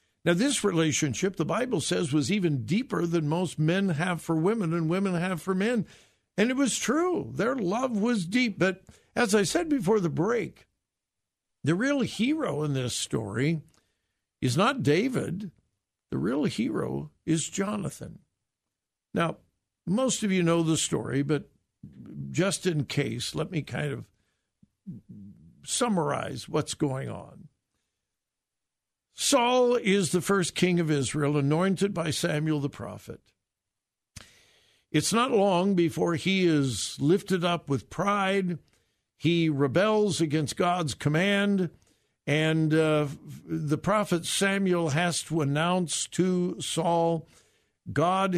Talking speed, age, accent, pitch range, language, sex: 130 wpm, 60-79, American, 140-190 Hz, English, male